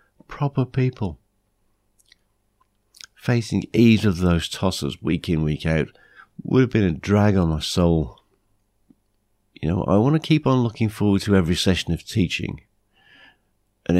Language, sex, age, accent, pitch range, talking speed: English, male, 50-69, British, 80-105 Hz, 145 wpm